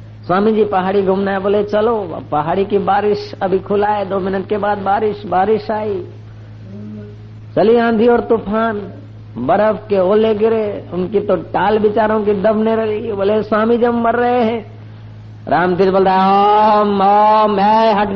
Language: Hindi